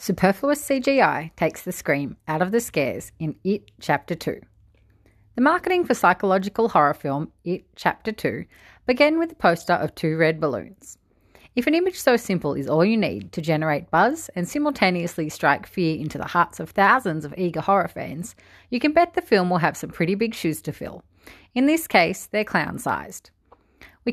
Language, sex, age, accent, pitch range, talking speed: English, female, 30-49, Australian, 165-240 Hz, 185 wpm